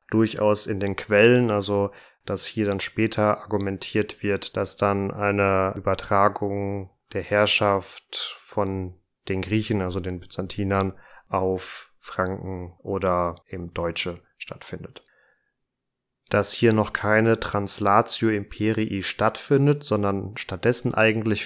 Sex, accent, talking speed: male, German, 110 wpm